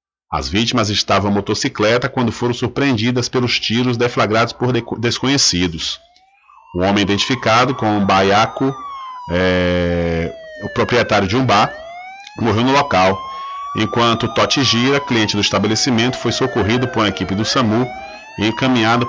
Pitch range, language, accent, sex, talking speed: 105-135 Hz, Portuguese, Brazilian, male, 130 wpm